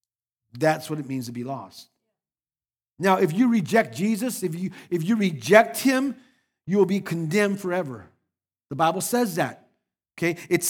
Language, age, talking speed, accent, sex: English, 50-69, 165 wpm, American, male